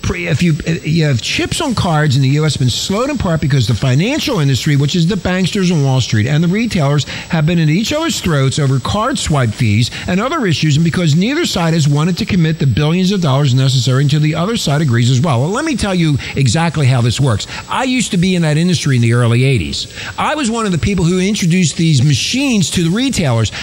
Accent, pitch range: American, 145-220 Hz